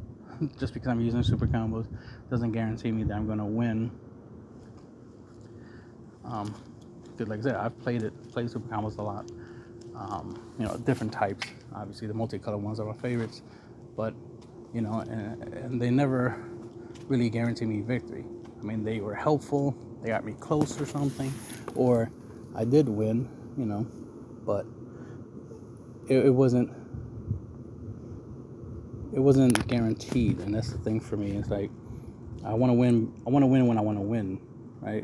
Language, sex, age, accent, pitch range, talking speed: English, male, 20-39, American, 110-120 Hz, 165 wpm